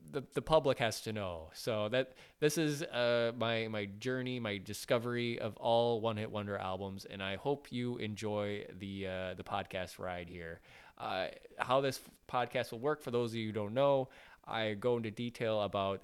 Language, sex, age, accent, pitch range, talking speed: English, male, 20-39, American, 100-130 Hz, 190 wpm